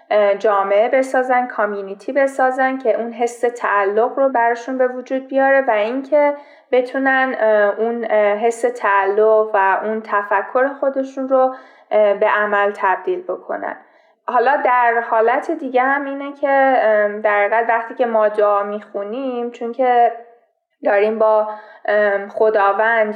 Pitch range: 205-250 Hz